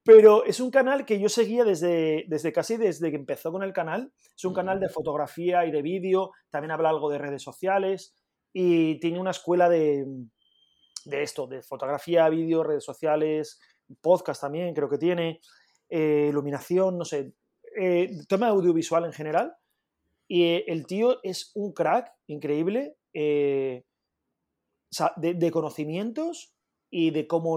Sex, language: male, English